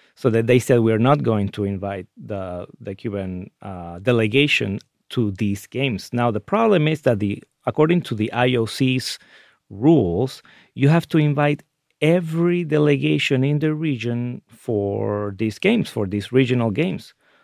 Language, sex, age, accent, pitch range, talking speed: English, male, 30-49, Mexican, 105-135 Hz, 155 wpm